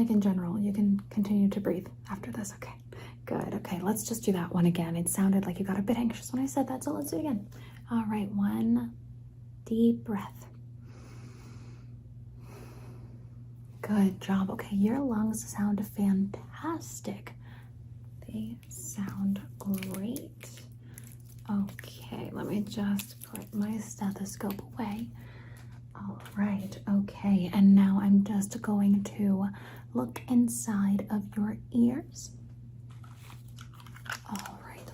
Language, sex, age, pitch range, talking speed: English, female, 20-39, 120-200 Hz, 125 wpm